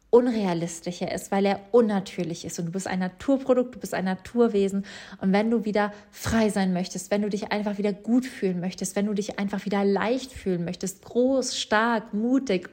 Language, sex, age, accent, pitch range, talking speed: German, female, 20-39, German, 190-225 Hz, 195 wpm